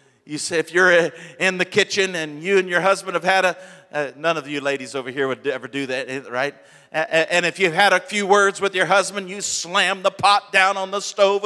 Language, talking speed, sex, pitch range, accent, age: English, 235 wpm, male, 170-230 Hz, American, 50-69